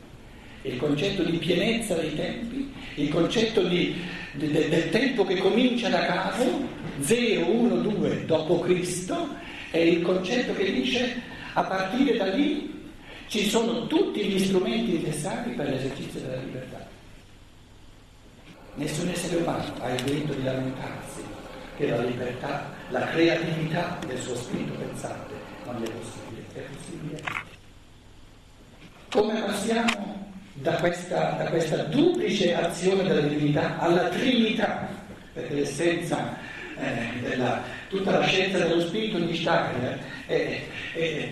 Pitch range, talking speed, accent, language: 140-195 Hz, 130 wpm, native, Italian